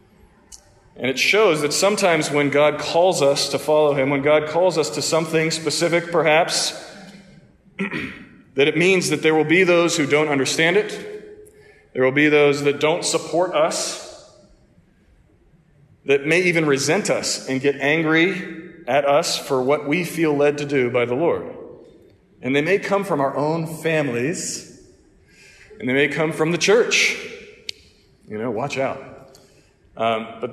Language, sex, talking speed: English, male, 160 wpm